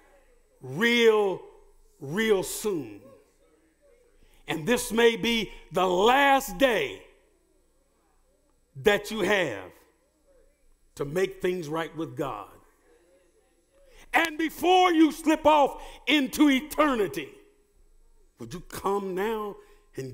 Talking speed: 90 wpm